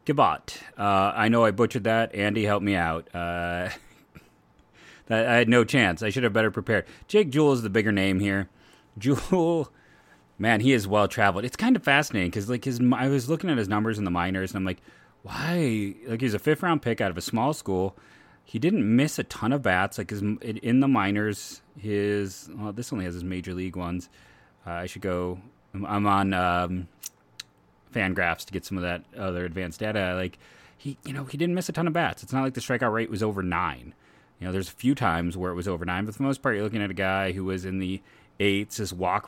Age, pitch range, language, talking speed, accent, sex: 30-49, 95-135 Hz, English, 225 wpm, American, male